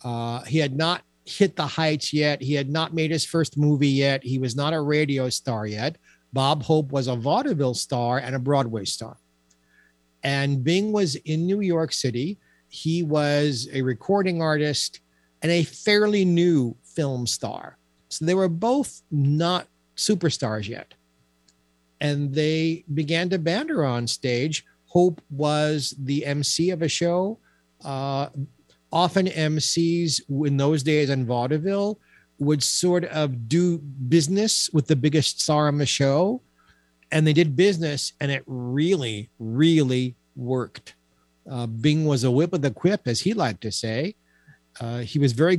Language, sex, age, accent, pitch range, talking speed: English, male, 50-69, American, 125-165 Hz, 155 wpm